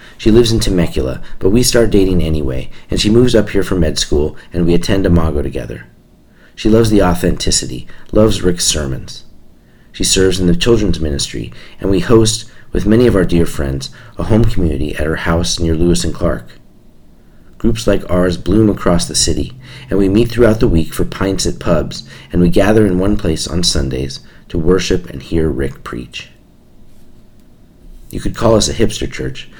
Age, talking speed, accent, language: 40-59, 185 wpm, American, English